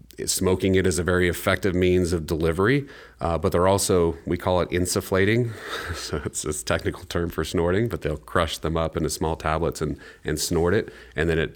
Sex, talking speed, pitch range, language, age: male, 200 wpm, 80-100 Hz, English, 30-49